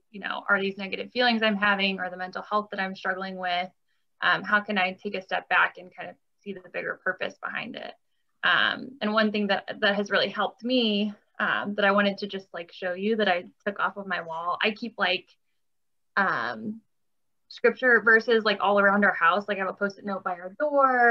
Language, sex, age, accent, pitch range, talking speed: English, female, 10-29, American, 185-215 Hz, 225 wpm